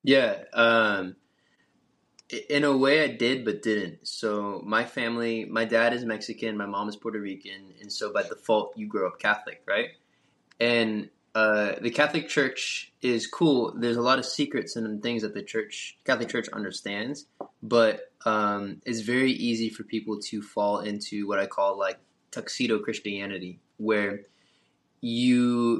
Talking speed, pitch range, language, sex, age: 160 wpm, 105-120 Hz, English, male, 20-39